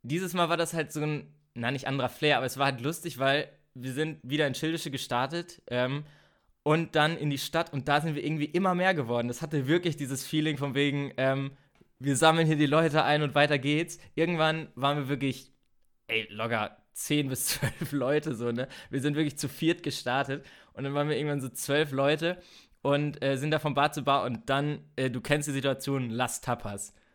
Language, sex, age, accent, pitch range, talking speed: German, male, 20-39, German, 130-155 Hz, 215 wpm